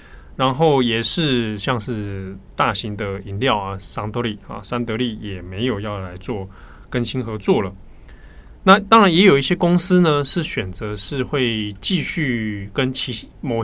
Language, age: Chinese, 20-39